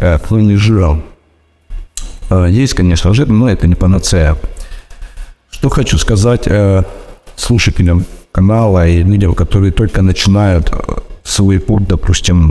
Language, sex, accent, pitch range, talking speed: Russian, male, native, 85-100 Hz, 105 wpm